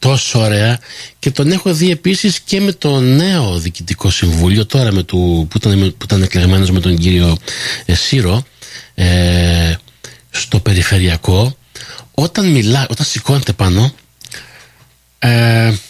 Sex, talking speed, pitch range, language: male, 130 wpm, 90-135 Hz, Greek